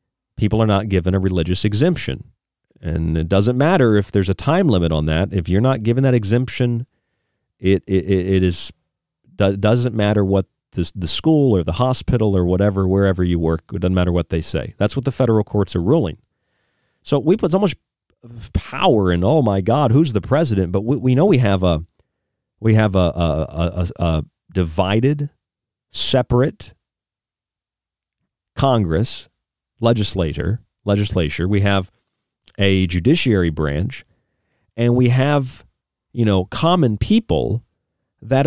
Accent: American